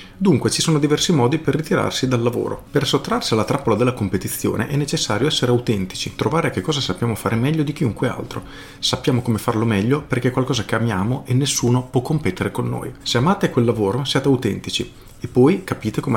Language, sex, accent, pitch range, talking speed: Italian, male, native, 105-130 Hz, 195 wpm